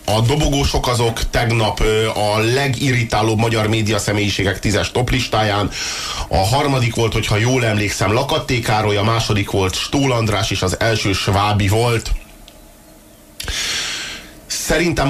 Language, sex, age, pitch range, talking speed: Hungarian, male, 30-49, 105-130 Hz, 120 wpm